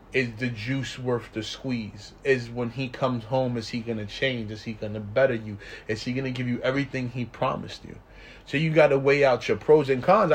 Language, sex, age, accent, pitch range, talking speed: English, male, 30-49, American, 110-135 Hz, 245 wpm